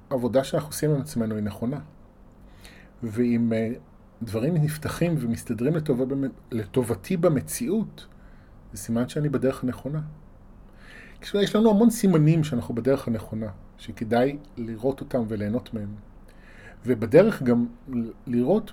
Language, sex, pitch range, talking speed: Hebrew, male, 105-145 Hz, 110 wpm